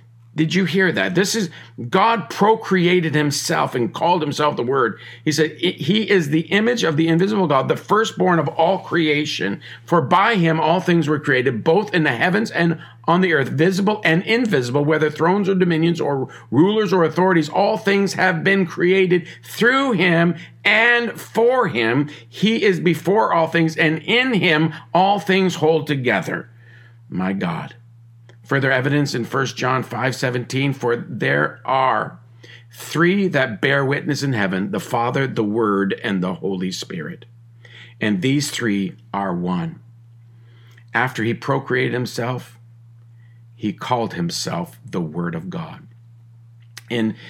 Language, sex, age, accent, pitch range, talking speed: English, male, 50-69, American, 115-170 Hz, 150 wpm